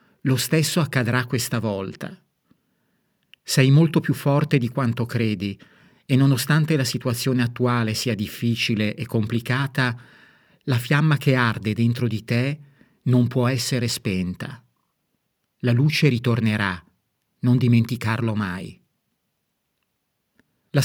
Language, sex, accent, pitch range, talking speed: Italian, male, native, 110-145 Hz, 110 wpm